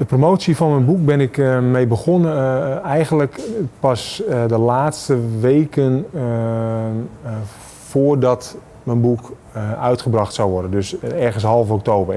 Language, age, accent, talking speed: Dutch, 30-49, Dutch, 155 wpm